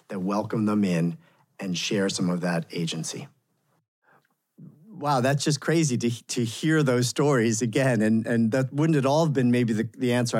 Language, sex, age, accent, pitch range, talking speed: English, male, 40-59, American, 100-125 Hz, 185 wpm